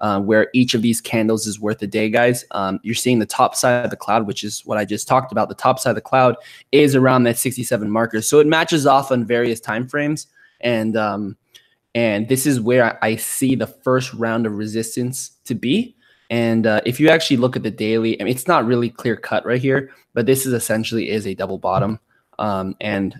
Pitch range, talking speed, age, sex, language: 115-135 Hz, 230 wpm, 20-39, male, English